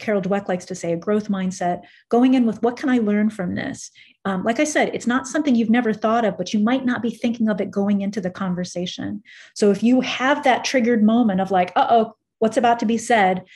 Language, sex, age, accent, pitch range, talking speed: English, female, 30-49, American, 195-245 Hz, 250 wpm